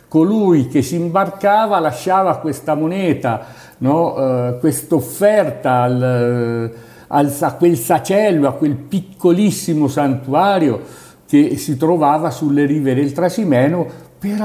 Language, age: Italian, 60-79